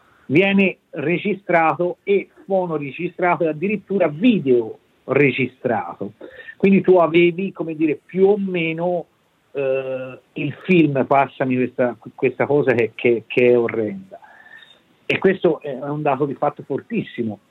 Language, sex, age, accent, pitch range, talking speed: Italian, male, 50-69, native, 130-175 Hz, 125 wpm